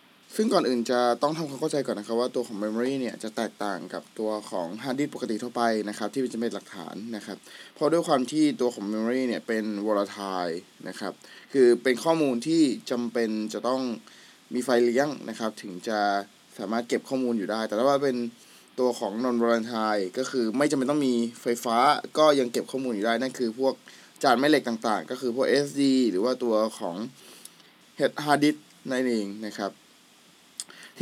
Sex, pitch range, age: male, 115-140 Hz, 20-39